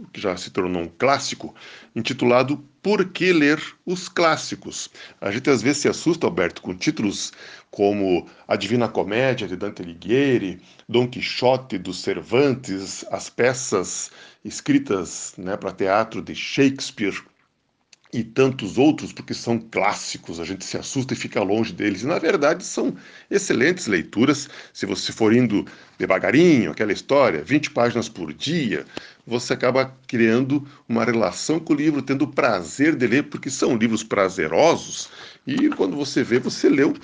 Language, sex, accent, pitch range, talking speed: Portuguese, male, Brazilian, 110-155 Hz, 150 wpm